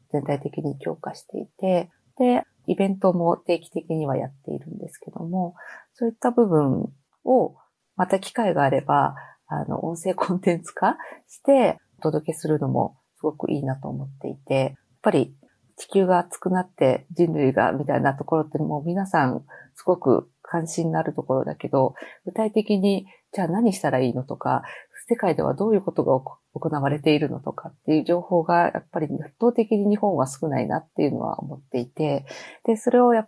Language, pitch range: Japanese, 150-210 Hz